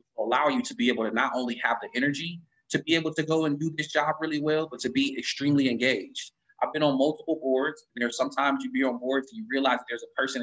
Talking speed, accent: 260 wpm, American